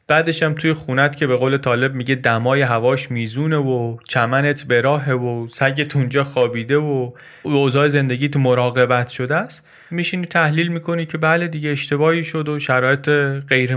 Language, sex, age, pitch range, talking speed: Persian, male, 30-49, 120-155 Hz, 165 wpm